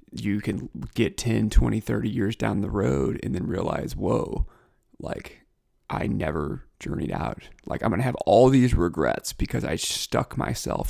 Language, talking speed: English, 170 wpm